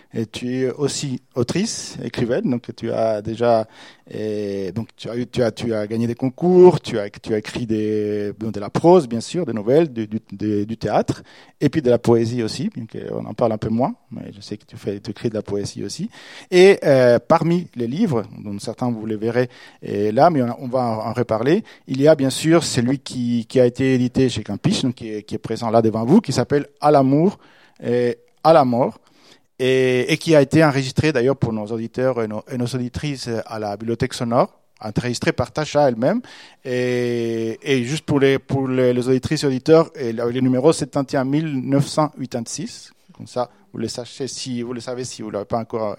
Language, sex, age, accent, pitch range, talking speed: French, male, 40-59, French, 115-145 Hz, 215 wpm